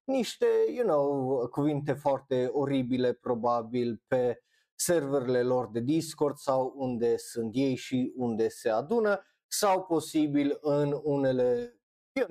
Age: 30-49